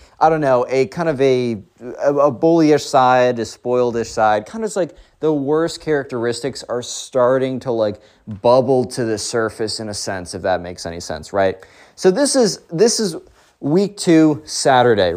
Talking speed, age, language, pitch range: 180 wpm, 20-39, English, 105-160 Hz